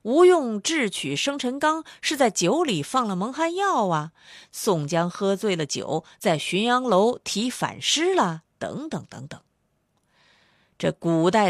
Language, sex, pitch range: Chinese, female, 175-255 Hz